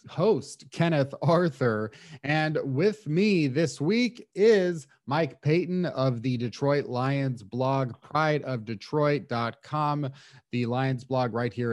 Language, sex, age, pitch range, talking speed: English, male, 30-49, 130-150 Hz, 115 wpm